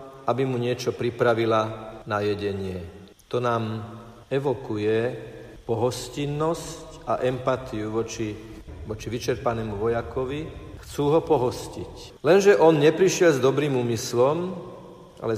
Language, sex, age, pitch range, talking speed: Slovak, male, 50-69, 110-130 Hz, 100 wpm